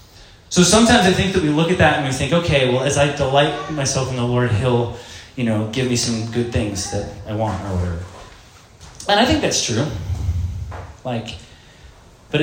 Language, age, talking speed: English, 20-39, 200 wpm